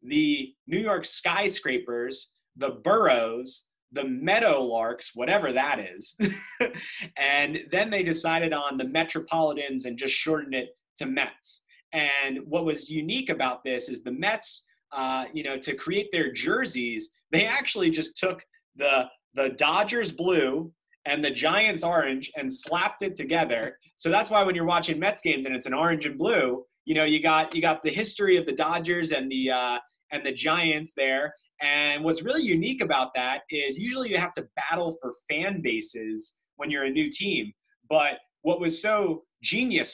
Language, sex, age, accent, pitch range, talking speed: English, male, 30-49, American, 145-205 Hz, 170 wpm